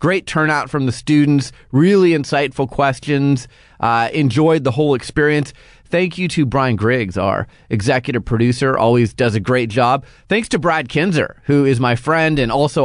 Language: English